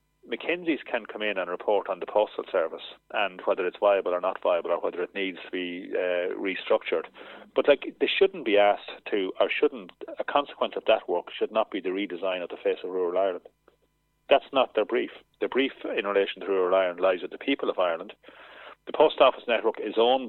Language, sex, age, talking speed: English, male, 30-49, 215 wpm